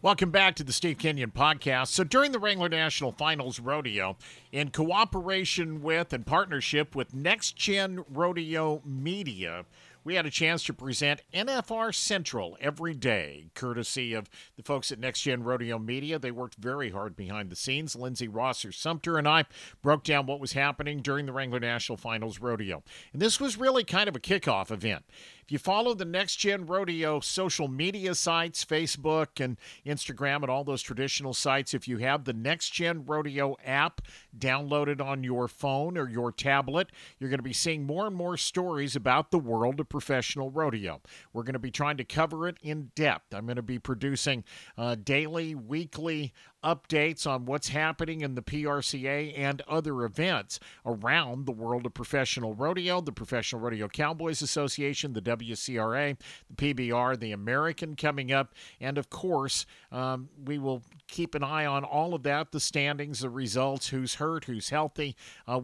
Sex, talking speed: male, 175 wpm